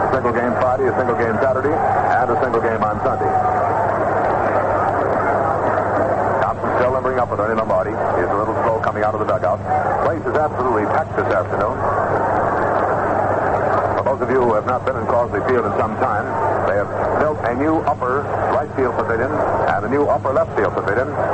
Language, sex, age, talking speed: English, male, 60-79, 185 wpm